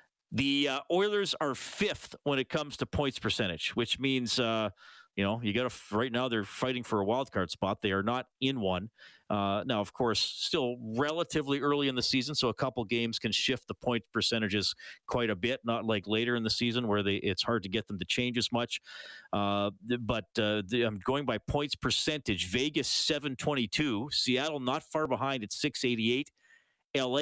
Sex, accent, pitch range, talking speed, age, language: male, American, 105-150 Hz, 205 wpm, 40-59, English